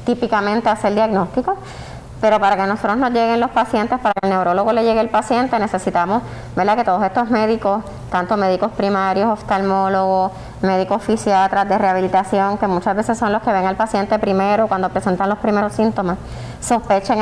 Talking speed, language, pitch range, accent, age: 170 wpm, Spanish, 185-215 Hz, American, 20-39